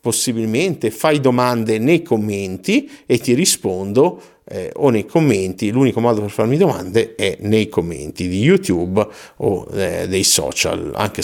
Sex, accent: male, native